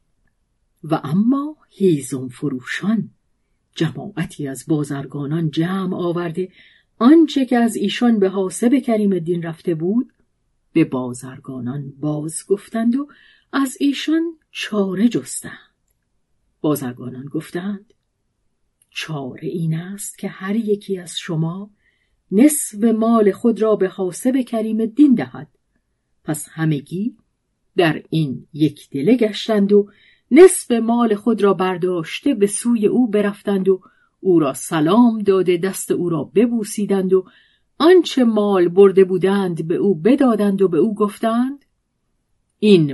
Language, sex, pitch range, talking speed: Persian, female, 165-230 Hz, 120 wpm